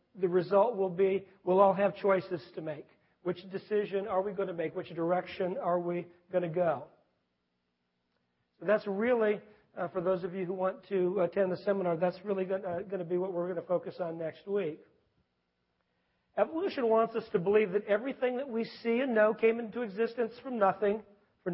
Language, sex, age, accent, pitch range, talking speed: English, male, 50-69, American, 155-200 Hz, 195 wpm